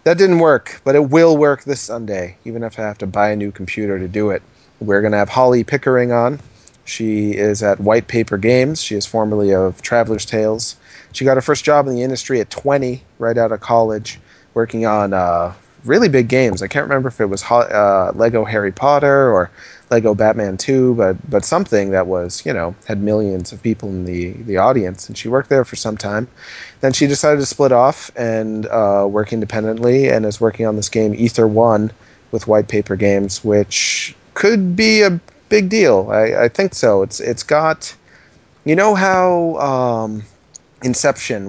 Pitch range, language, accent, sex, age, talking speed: 100-120 Hz, English, American, male, 30-49, 195 wpm